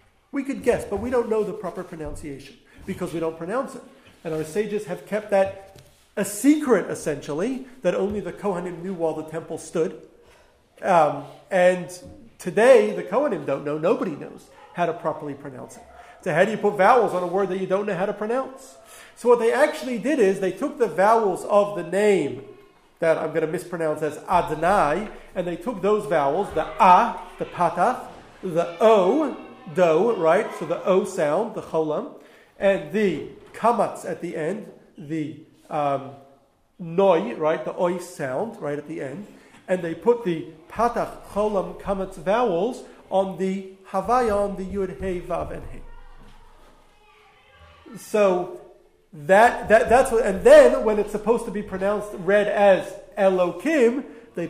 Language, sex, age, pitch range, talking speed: English, male, 40-59, 165-215 Hz, 165 wpm